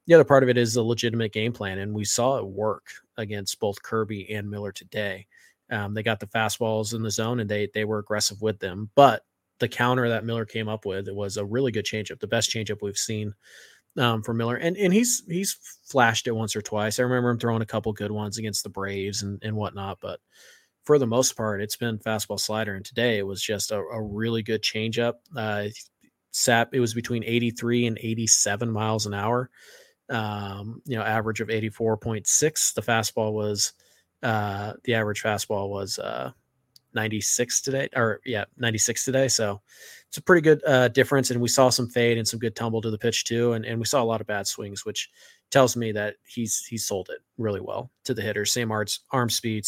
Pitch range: 105-120 Hz